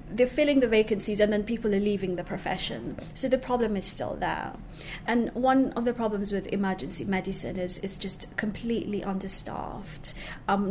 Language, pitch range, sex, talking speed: English, 185-215 Hz, female, 175 wpm